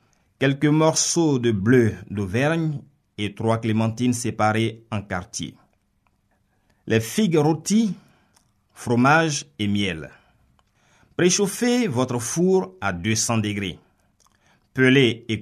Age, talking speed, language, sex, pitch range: 50-69, 95 wpm, French, male, 100-145 Hz